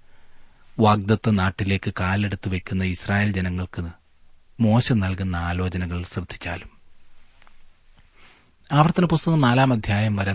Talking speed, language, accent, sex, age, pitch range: 80 wpm, Malayalam, native, male, 30-49, 85-105 Hz